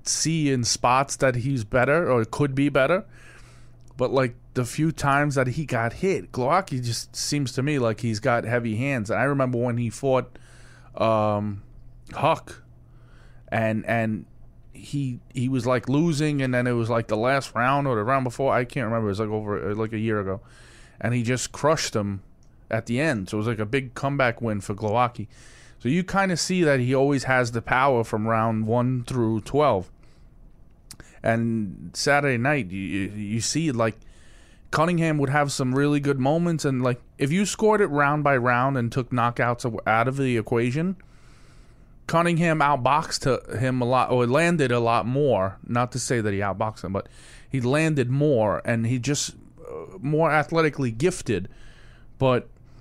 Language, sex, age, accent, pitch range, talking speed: English, male, 20-39, American, 115-140 Hz, 180 wpm